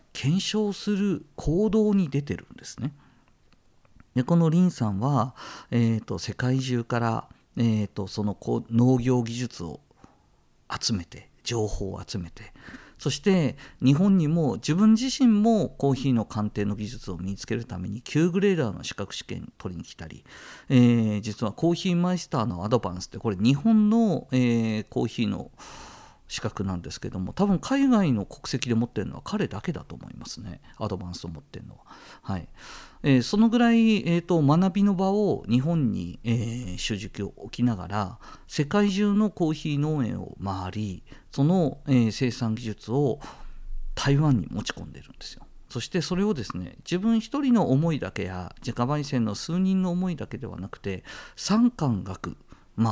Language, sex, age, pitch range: Japanese, male, 50-69, 105-175 Hz